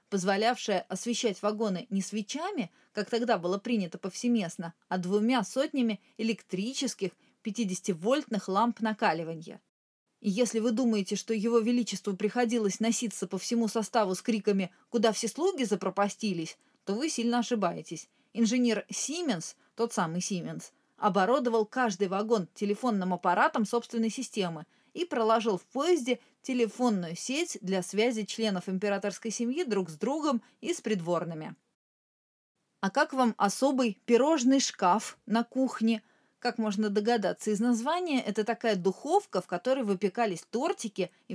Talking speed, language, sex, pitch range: 130 wpm, Russian, female, 195-245 Hz